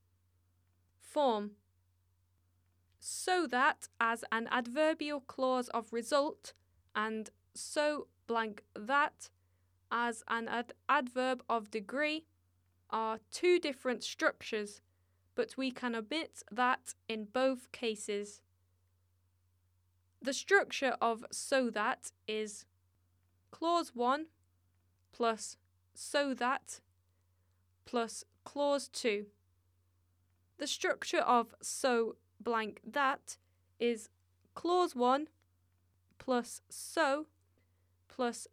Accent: British